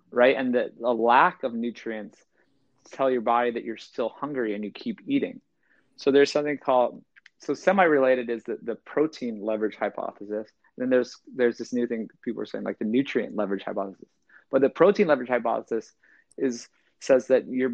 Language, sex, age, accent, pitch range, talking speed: English, male, 30-49, American, 120-145 Hz, 185 wpm